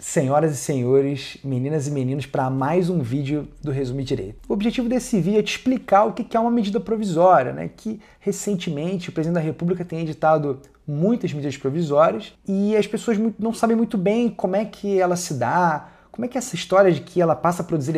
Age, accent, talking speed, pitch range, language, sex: 30-49, Brazilian, 210 wpm, 155-220 Hz, Portuguese, male